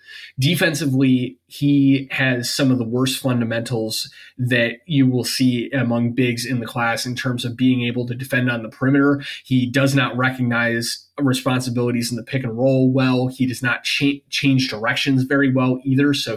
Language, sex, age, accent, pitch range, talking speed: English, male, 20-39, American, 120-135 Hz, 170 wpm